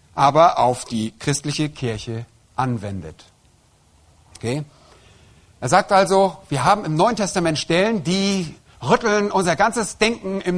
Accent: German